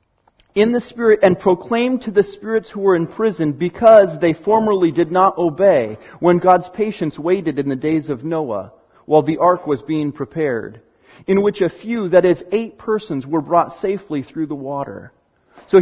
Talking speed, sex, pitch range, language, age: 180 wpm, male, 155-210 Hz, English, 40-59